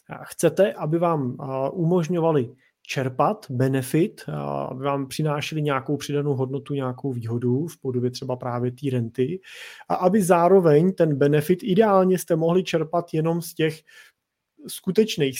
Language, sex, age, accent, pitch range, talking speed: Czech, male, 30-49, native, 135-155 Hz, 140 wpm